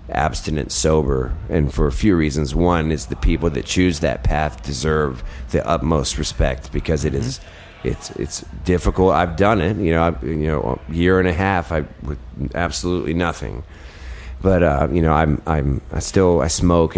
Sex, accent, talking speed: male, American, 185 wpm